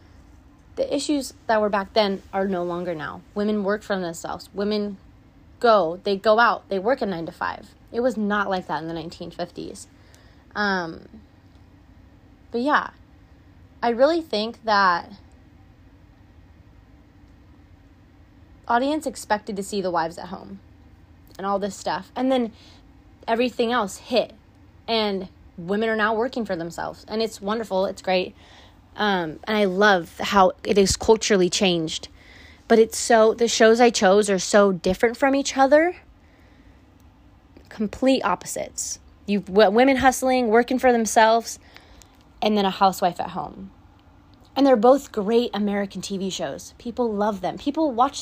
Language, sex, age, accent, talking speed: English, female, 20-39, American, 145 wpm